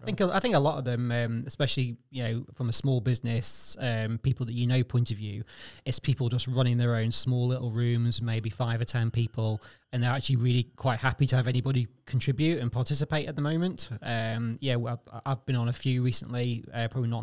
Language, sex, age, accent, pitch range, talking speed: English, male, 30-49, British, 115-130 Hz, 220 wpm